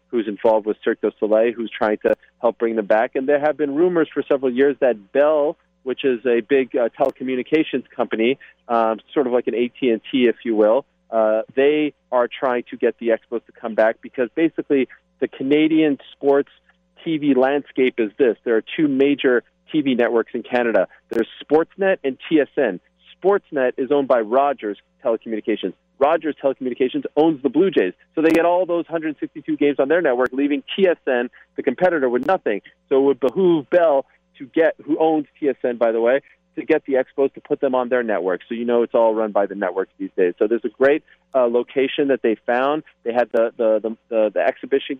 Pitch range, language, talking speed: 120-155 Hz, English, 200 wpm